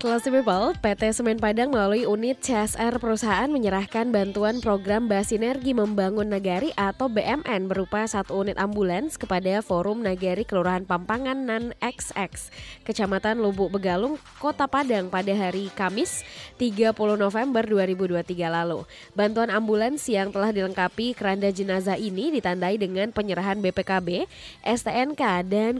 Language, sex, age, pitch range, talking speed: Indonesian, female, 20-39, 190-225 Hz, 125 wpm